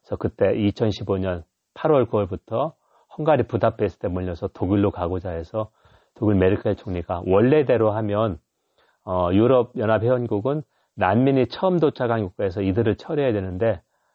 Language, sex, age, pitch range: Korean, male, 40-59, 95-125 Hz